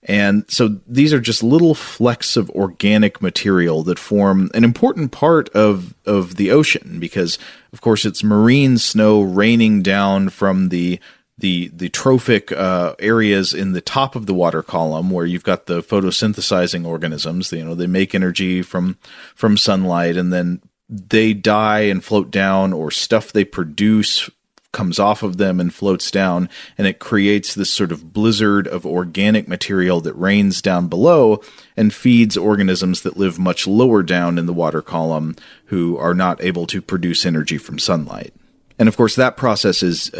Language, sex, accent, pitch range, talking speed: English, male, American, 90-110 Hz, 170 wpm